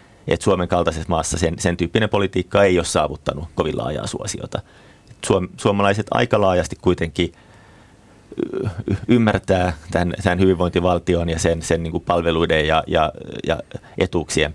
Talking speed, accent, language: 140 wpm, native, Finnish